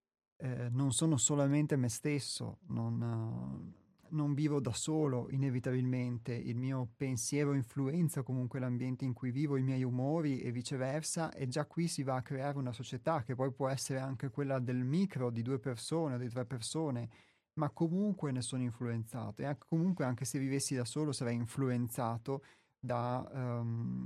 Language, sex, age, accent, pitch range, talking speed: Italian, male, 30-49, native, 125-150 Hz, 170 wpm